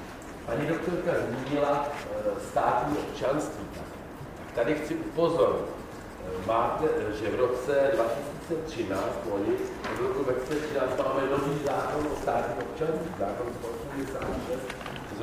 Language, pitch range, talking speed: Czech, 120-145 Hz, 100 wpm